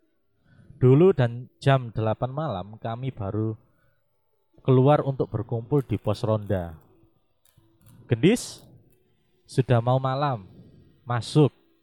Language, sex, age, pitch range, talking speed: Indonesian, male, 20-39, 105-130 Hz, 90 wpm